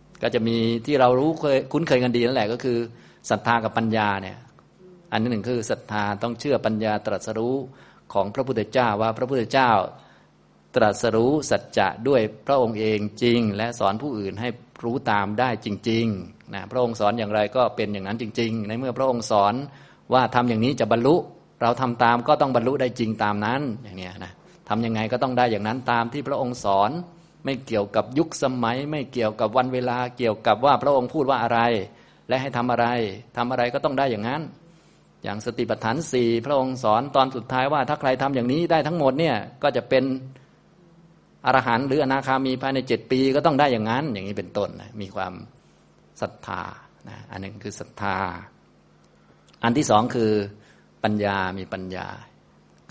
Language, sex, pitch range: Thai, male, 105-130 Hz